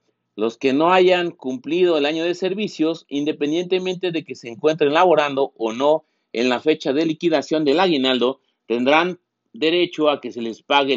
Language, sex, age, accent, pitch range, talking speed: Spanish, male, 40-59, Mexican, 135-175 Hz, 170 wpm